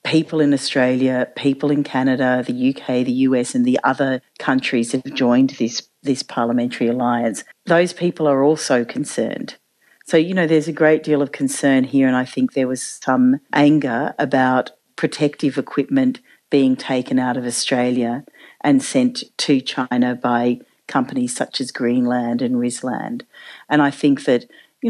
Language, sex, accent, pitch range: English, female, Australian, 130-170 Hz